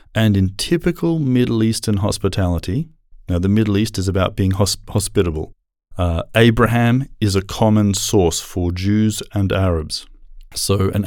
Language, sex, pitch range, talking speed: Finnish, male, 95-115 Hz, 140 wpm